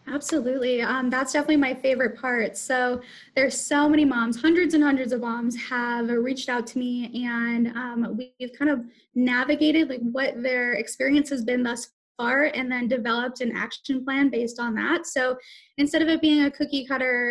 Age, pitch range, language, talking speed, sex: 10-29, 245-290 Hz, English, 185 wpm, female